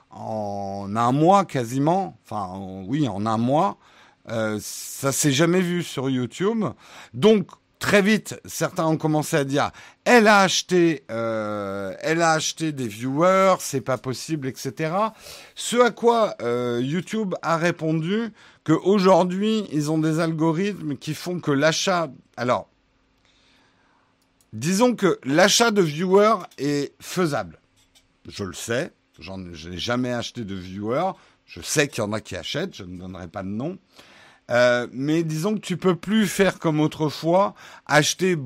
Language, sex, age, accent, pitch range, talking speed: French, male, 50-69, French, 125-180 Hz, 150 wpm